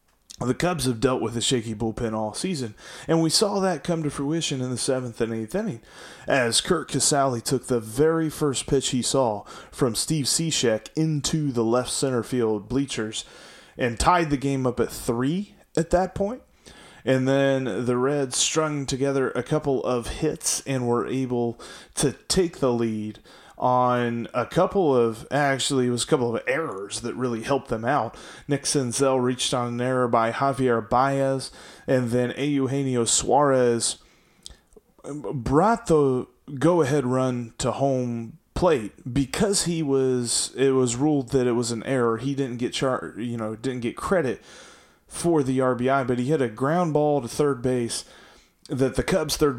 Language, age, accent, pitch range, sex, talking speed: English, 30-49, American, 120-145 Hz, male, 170 wpm